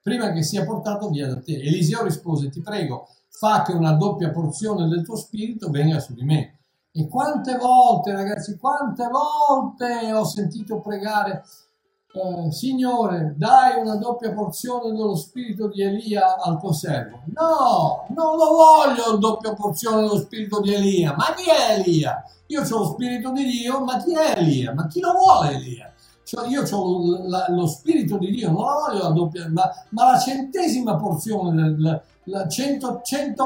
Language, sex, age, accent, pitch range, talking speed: Italian, male, 60-79, native, 160-245 Hz, 175 wpm